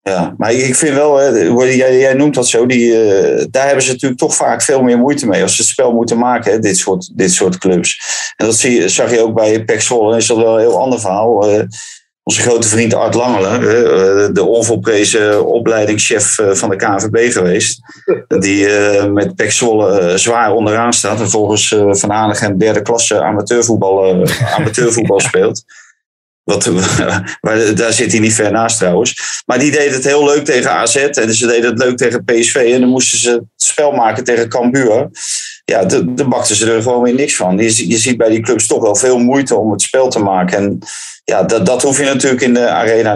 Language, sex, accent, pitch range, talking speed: Dutch, male, Dutch, 105-125 Hz, 200 wpm